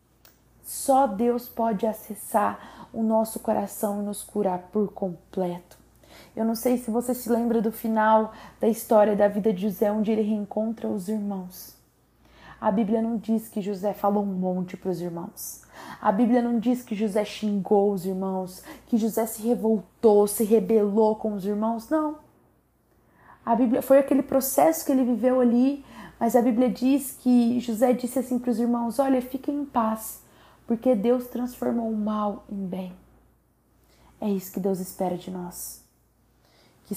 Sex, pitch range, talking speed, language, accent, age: female, 205-240 Hz, 165 wpm, Portuguese, Brazilian, 20-39